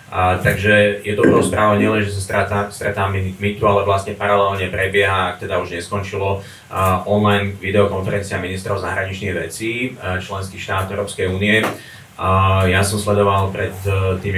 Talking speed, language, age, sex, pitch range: 140 wpm, Slovak, 30-49, male, 95-105 Hz